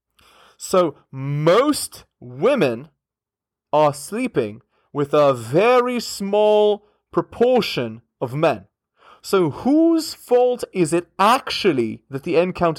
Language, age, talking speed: English, 30-49, 105 wpm